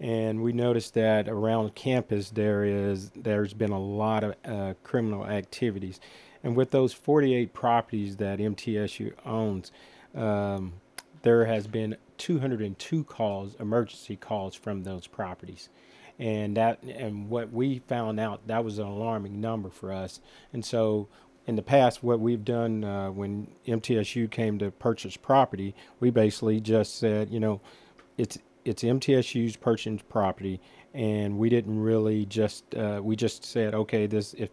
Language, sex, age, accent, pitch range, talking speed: English, male, 40-59, American, 100-115 Hz, 150 wpm